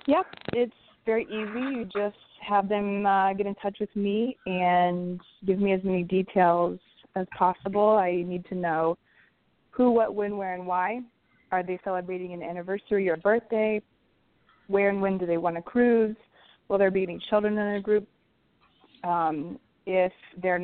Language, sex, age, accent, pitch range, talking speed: English, female, 20-39, American, 180-205 Hz, 170 wpm